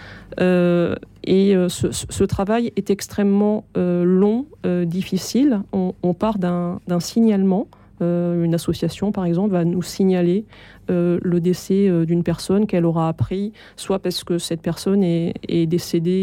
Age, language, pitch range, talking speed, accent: 30-49, French, 170-195 Hz, 160 wpm, French